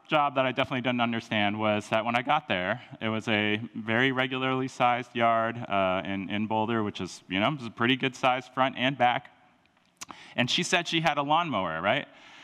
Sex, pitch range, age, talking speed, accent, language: male, 115-145 Hz, 30-49, 210 wpm, American, English